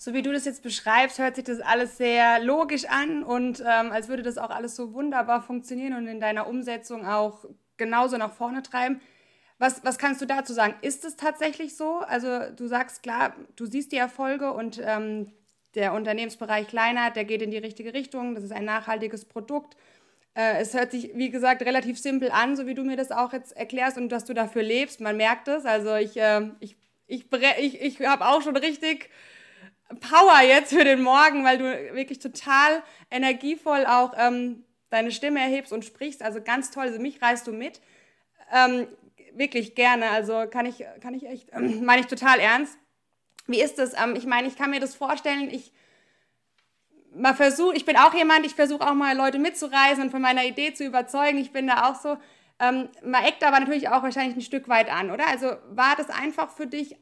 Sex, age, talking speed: female, 20-39, 205 wpm